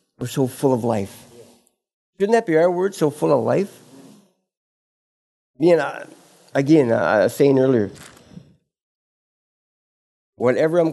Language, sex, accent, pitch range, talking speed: English, male, American, 115-150 Hz, 125 wpm